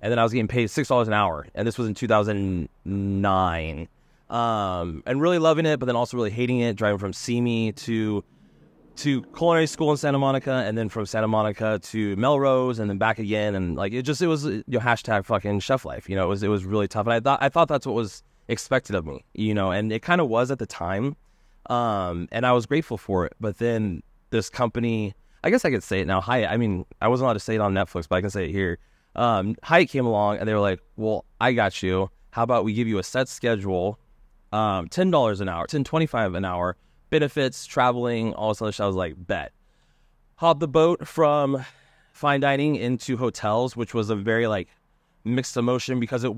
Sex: male